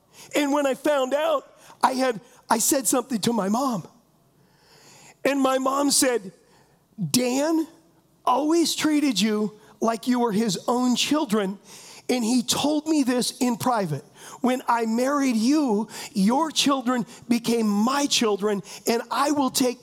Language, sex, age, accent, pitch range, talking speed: English, male, 40-59, American, 230-280 Hz, 140 wpm